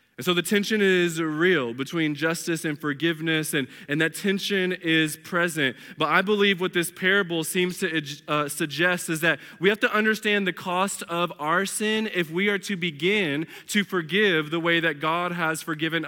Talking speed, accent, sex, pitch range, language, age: 185 wpm, American, male, 140-185 Hz, English, 20-39